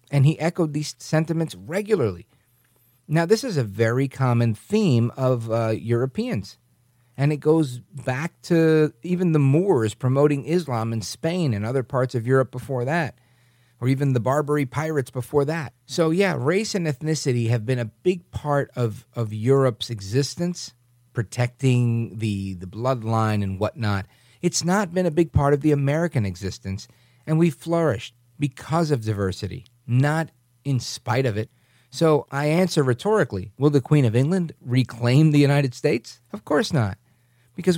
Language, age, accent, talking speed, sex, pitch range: English, 50-69, American, 160 wpm, male, 120-155 Hz